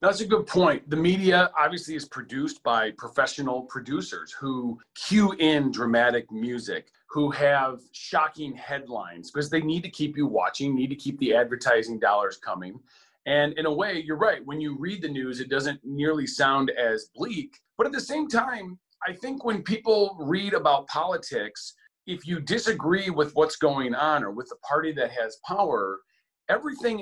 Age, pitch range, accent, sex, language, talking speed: 40-59, 130-175 Hz, American, male, English, 175 wpm